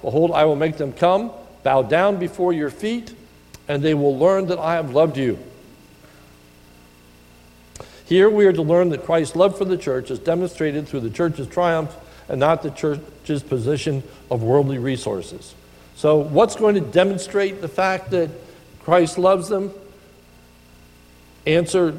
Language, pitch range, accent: English, 100-170 Hz, American